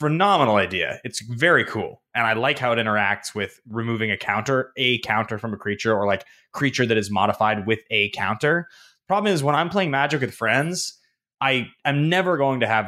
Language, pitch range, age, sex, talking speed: English, 110-150 Hz, 20-39, male, 200 wpm